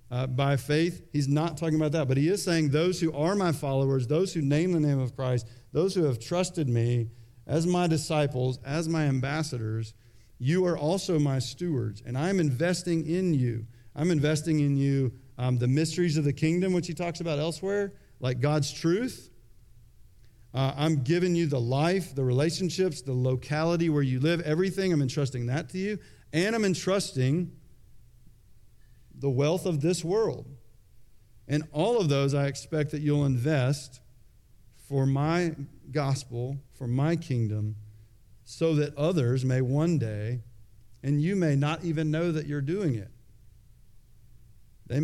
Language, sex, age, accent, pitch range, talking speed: English, male, 40-59, American, 120-155 Hz, 165 wpm